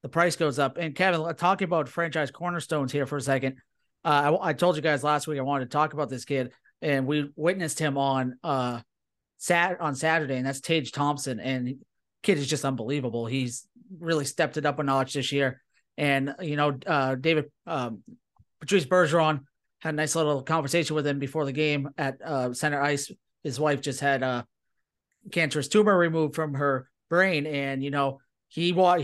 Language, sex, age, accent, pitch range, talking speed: English, male, 30-49, American, 140-170 Hz, 195 wpm